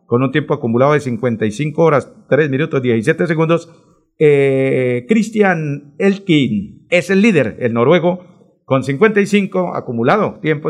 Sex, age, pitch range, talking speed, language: male, 50-69, 130-180 Hz, 130 wpm, Spanish